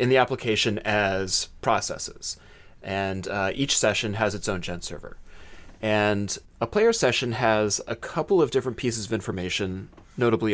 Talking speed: 155 wpm